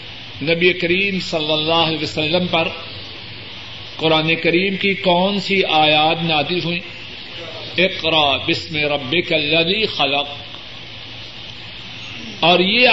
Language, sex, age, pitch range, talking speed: Urdu, male, 50-69, 115-195 Hz, 95 wpm